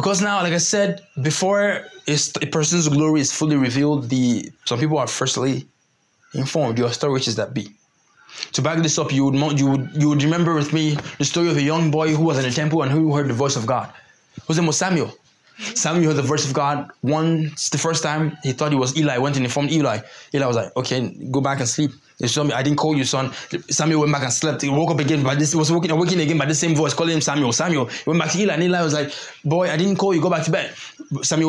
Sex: male